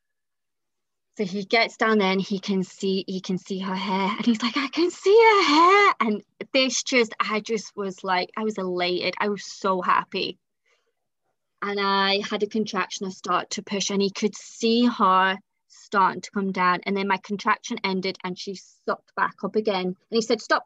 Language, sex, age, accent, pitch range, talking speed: English, female, 20-39, British, 190-225 Hz, 200 wpm